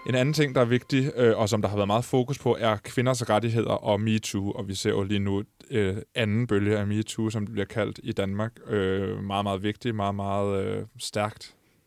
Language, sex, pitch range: Danish, male, 105-120 Hz